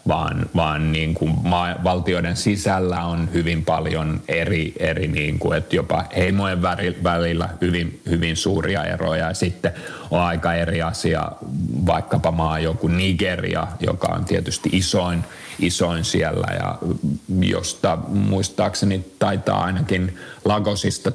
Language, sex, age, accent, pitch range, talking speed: Finnish, male, 30-49, native, 80-95 Hz, 130 wpm